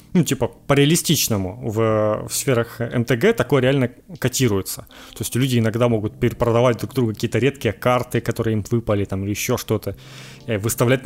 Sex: male